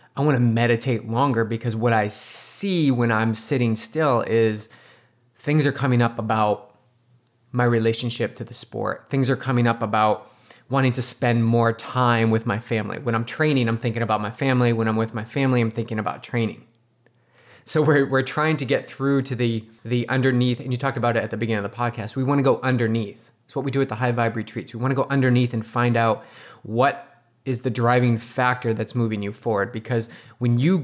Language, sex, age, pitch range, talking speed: English, male, 20-39, 115-130 Hz, 215 wpm